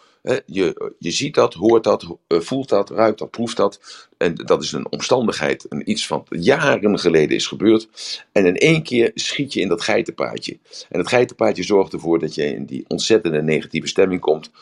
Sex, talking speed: male, 190 wpm